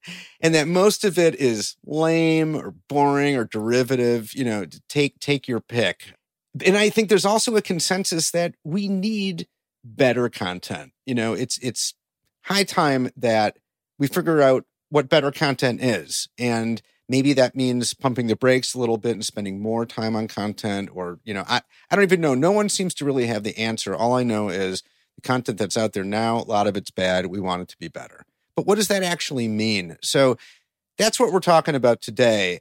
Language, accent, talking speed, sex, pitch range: English, American, 200 wpm, male, 110-150 Hz